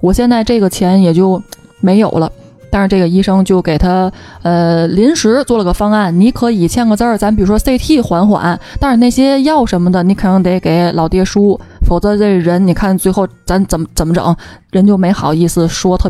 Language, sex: Chinese, female